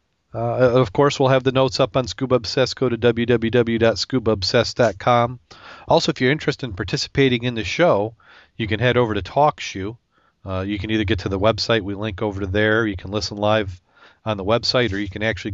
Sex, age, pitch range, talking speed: male, 40-59, 100-120 Hz, 210 wpm